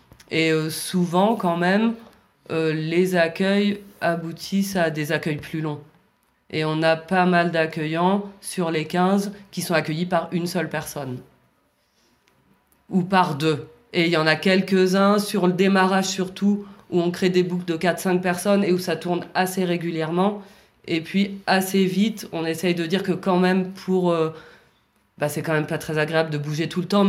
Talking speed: 180 wpm